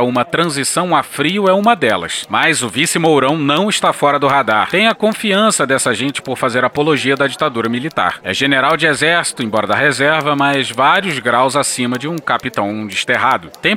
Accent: Brazilian